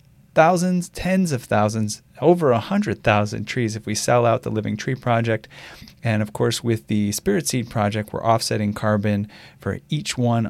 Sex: male